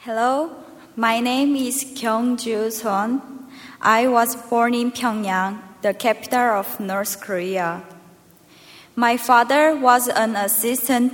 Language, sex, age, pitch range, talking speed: English, female, 20-39, 195-245 Hz, 115 wpm